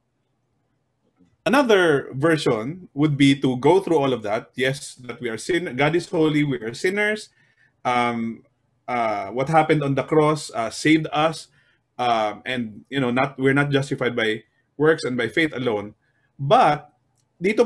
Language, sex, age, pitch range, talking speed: Filipino, male, 20-39, 125-155 Hz, 160 wpm